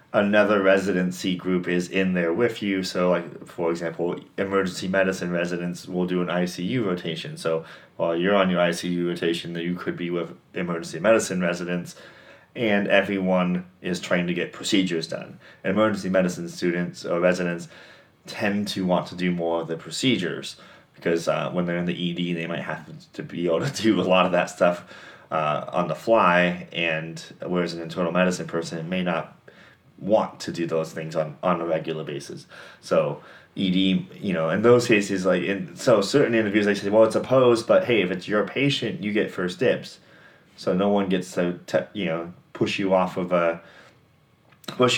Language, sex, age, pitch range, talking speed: English, male, 30-49, 85-100 Hz, 190 wpm